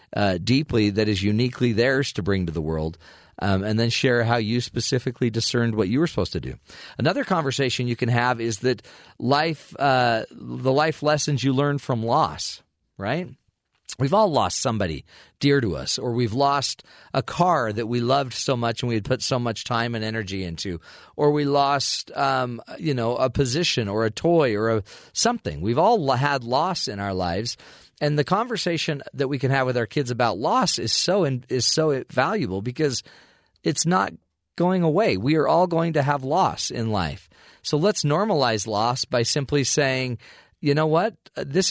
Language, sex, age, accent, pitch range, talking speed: English, male, 40-59, American, 115-145 Hz, 190 wpm